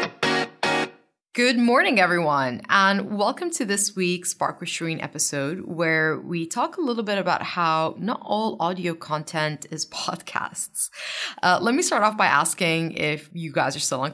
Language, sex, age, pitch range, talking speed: English, female, 20-39, 160-215 Hz, 165 wpm